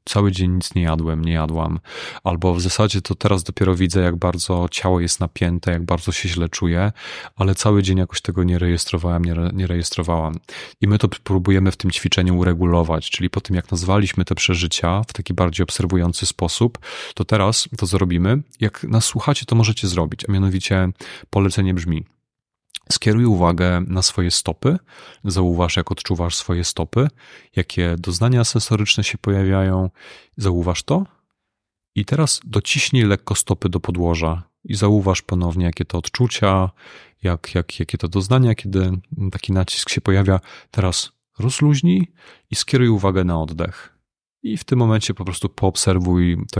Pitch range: 90-105 Hz